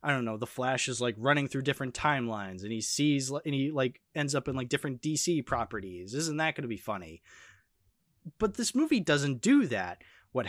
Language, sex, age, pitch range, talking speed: English, male, 20-39, 120-155 Hz, 210 wpm